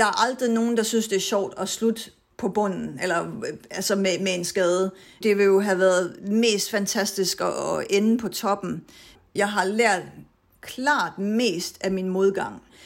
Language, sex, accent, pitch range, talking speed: Danish, female, native, 185-220 Hz, 180 wpm